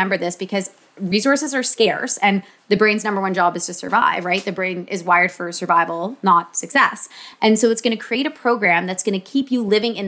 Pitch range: 185-230 Hz